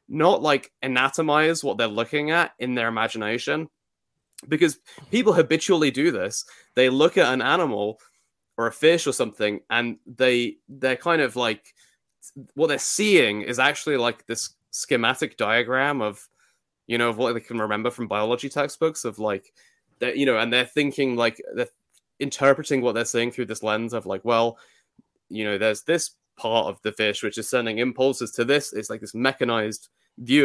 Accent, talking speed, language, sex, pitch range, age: British, 175 wpm, English, male, 115-140 Hz, 20-39